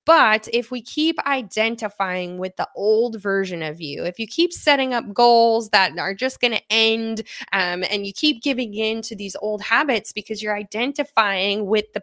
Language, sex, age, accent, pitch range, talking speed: English, female, 20-39, American, 185-250 Hz, 185 wpm